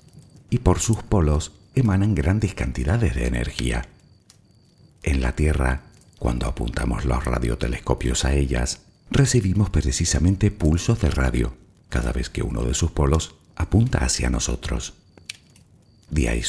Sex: male